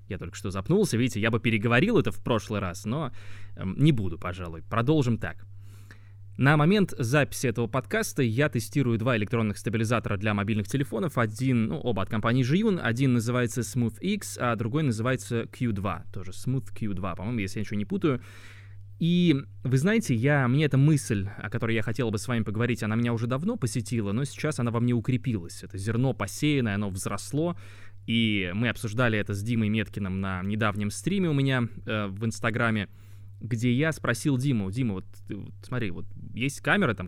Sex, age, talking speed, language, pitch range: male, 20-39, 180 wpm, Russian, 100-130 Hz